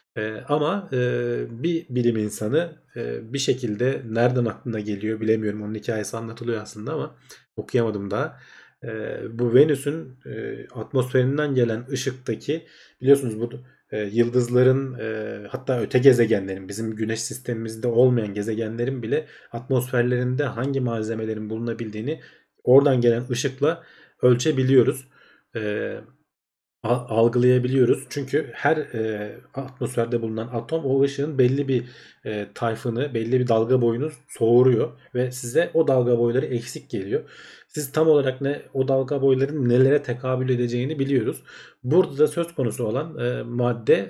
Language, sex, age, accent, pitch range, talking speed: Turkish, male, 40-59, native, 110-135 Hz, 125 wpm